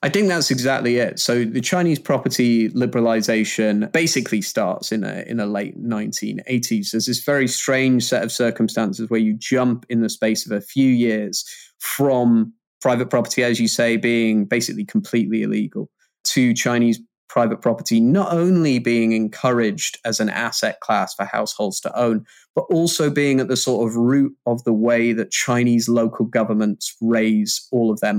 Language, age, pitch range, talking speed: English, 20-39, 115-135 Hz, 170 wpm